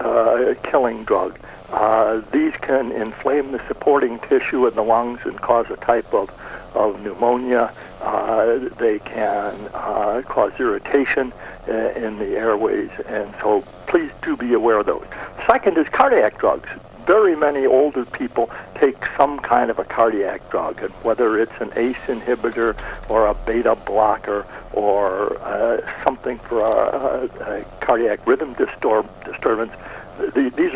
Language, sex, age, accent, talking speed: English, male, 60-79, American, 140 wpm